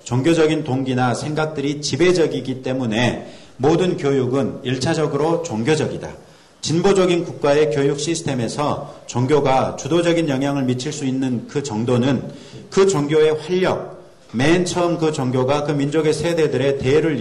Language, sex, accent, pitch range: Korean, male, native, 130-165 Hz